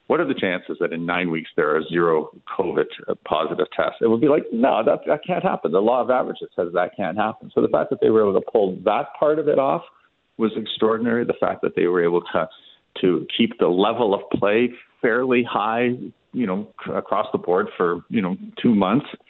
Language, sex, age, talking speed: English, male, 50-69, 225 wpm